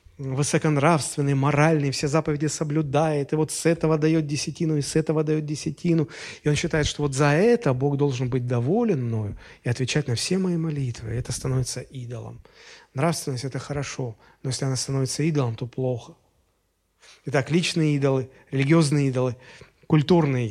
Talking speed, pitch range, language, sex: 155 wpm, 125-150 Hz, Russian, male